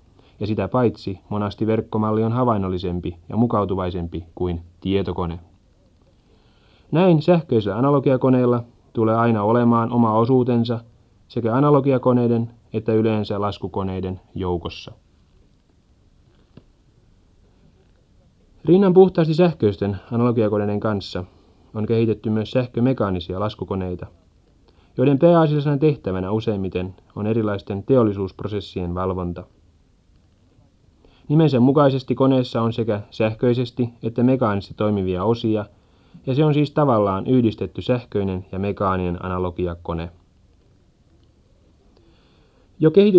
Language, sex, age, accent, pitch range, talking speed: Finnish, male, 30-49, native, 95-125 Hz, 90 wpm